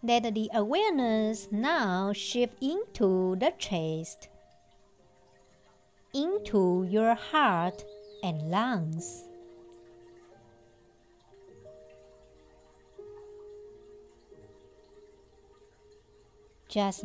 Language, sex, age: Chinese, male, 60-79